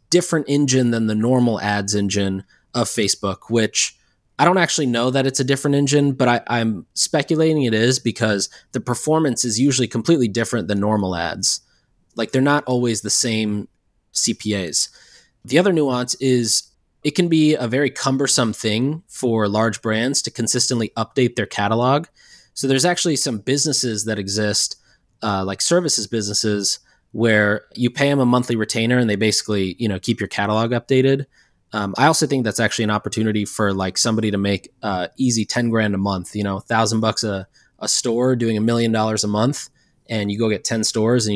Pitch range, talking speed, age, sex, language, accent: 105-130 Hz, 180 wpm, 20-39, male, English, American